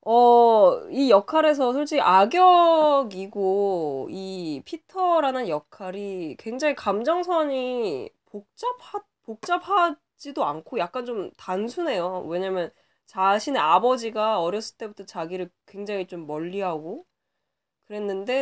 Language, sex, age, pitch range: Korean, female, 20-39, 175-245 Hz